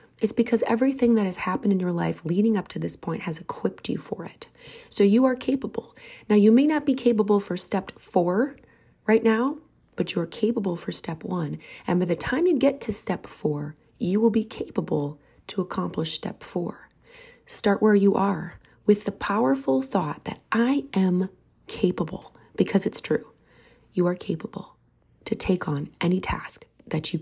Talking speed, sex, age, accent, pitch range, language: 185 wpm, female, 30-49, American, 165-225 Hz, English